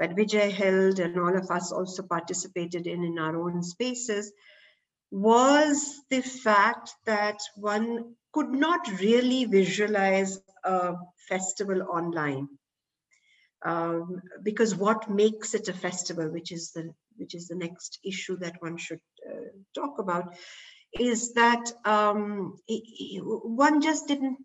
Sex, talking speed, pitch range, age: female, 130 wpm, 180-235 Hz, 60-79